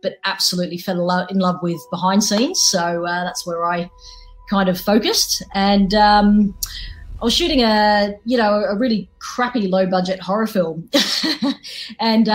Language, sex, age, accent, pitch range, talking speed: English, female, 30-49, Australian, 170-205 Hz, 145 wpm